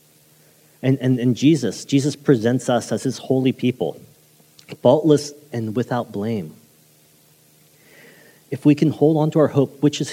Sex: male